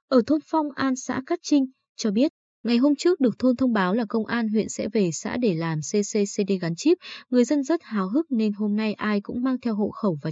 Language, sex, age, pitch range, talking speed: Vietnamese, female, 20-39, 200-260 Hz, 250 wpm